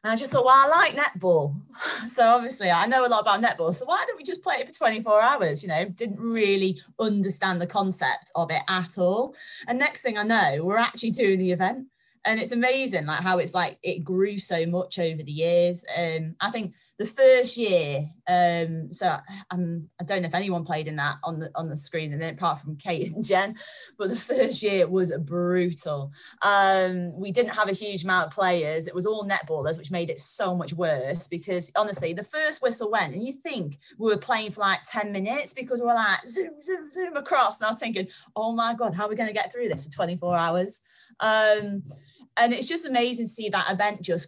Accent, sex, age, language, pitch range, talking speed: British, female, 20-39, English, 175-230 Hz, 225 wpm